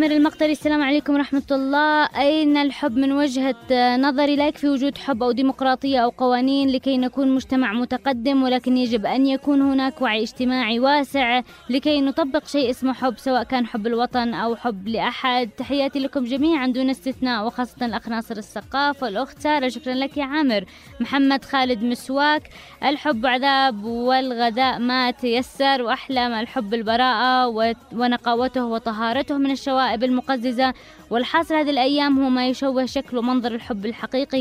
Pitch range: 245-280 Hz